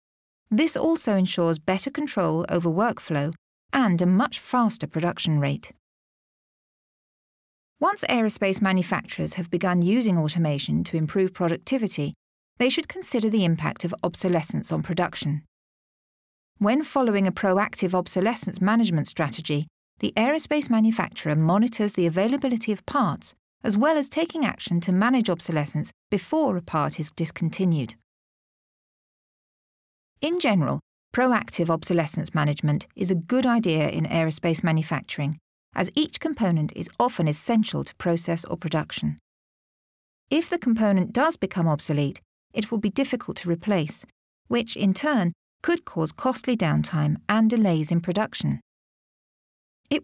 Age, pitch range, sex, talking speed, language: 40-59, 165-235 Hz, female, 125 wpm, English